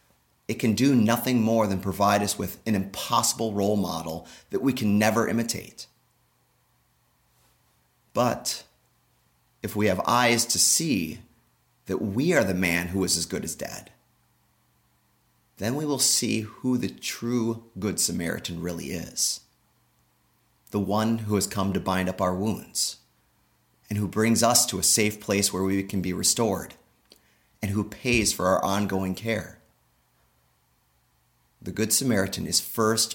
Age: 30-49